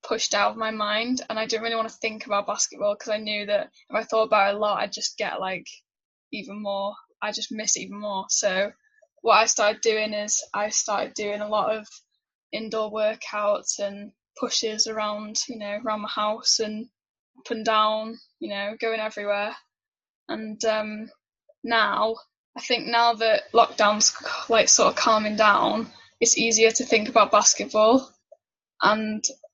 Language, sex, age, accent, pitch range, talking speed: English, female, 10-29, British, 210-235 Hz, 175 wpm